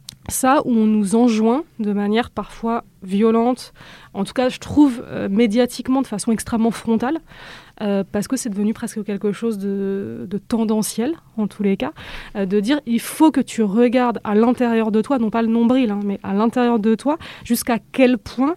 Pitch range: 205-250 Hz